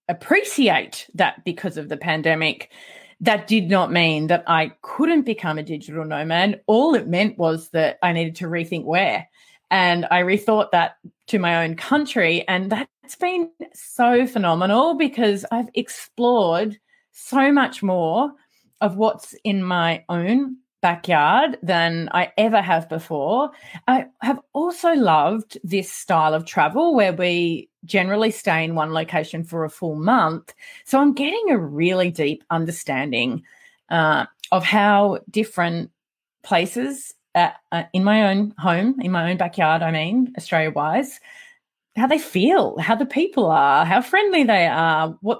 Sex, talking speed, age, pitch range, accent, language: female, 150 wpm, 30-49, 170-260 Hz, Australian, English